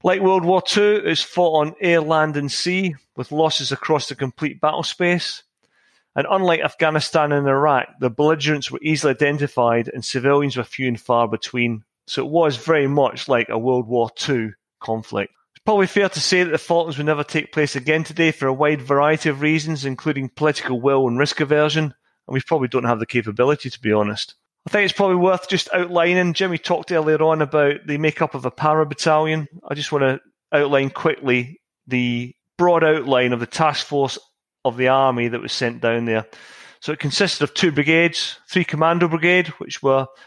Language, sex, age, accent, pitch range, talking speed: English, male, 30-49, British, 135-165 Hz, 200 wpm